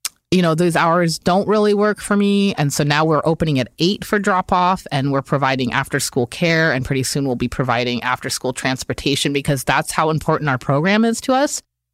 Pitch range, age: 130-180 Hz, 30-49